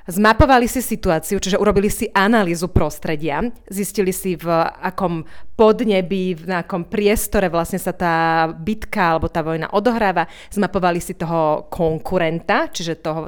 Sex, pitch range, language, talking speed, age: female, 165-200 Hz, Slovak, 135 wpm, 30-49